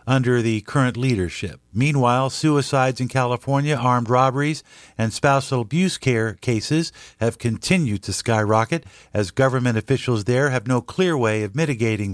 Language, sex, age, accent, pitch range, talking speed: English, male, 50-69, American, 110-140 Hz, 145 wpm